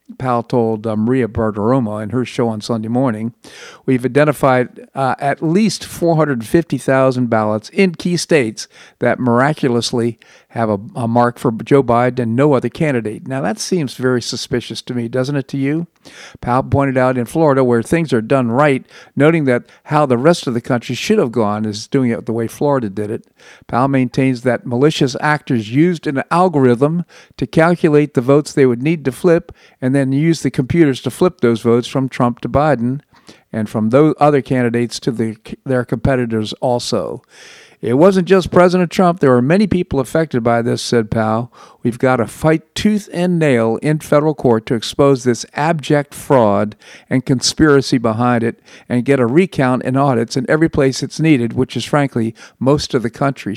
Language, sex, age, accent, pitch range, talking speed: English, male, 50-69, American, 120-150 Hz, 185 wpm